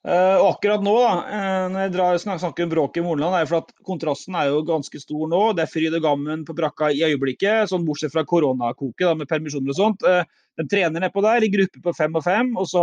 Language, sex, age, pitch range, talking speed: English, male, 30-49, 150-180 Hz, 255 wpm